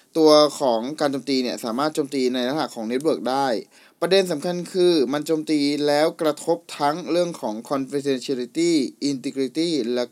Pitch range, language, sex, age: 130-175 Hz, Thai, male, 20-39